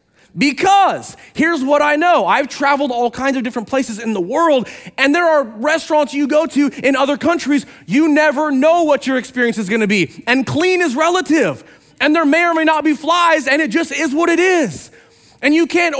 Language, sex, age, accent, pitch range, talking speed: English, male, 30-49, American, 215-295 Hz, 215 wpm